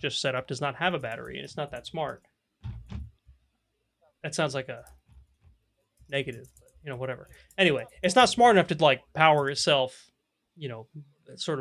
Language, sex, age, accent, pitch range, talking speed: English, male, 20-39, American, 130-160 Hz, 170 wpm